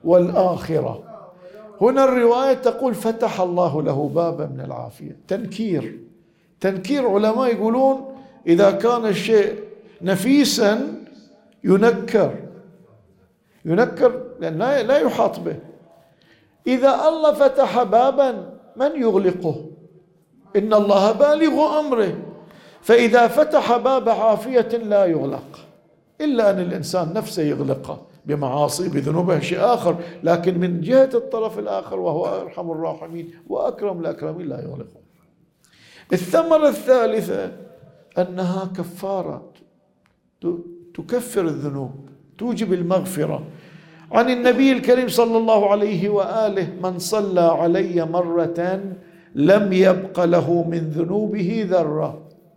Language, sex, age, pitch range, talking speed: Arabic, male, 50-69, 170-235 Hz, 100 wpm